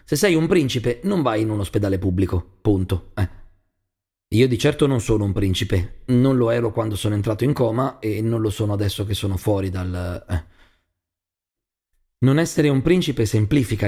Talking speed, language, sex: 180 wpm, Italian, male